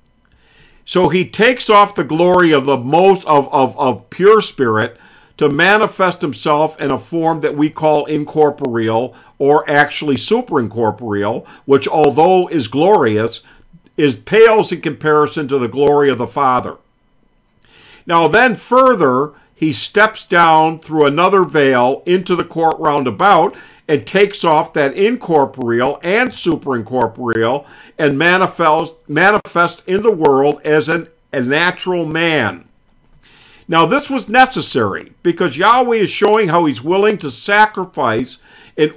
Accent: American